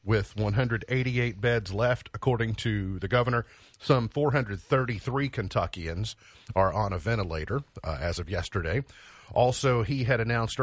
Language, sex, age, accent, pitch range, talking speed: English, male, 50-69, American, 95-120 Hz, 130 wpm